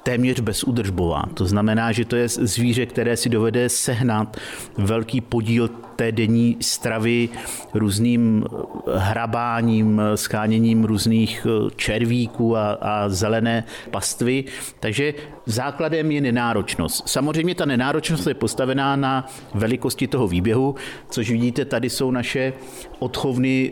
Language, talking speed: Czech, 115 wpm